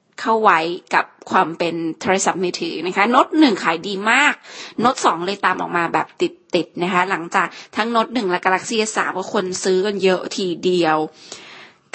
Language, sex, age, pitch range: Thai, female, 20-39, 180-235 Hz